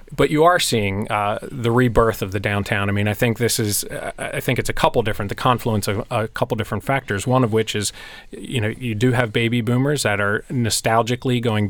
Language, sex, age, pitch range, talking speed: English, male, 30-49, 110-125 Hz, 225 wpm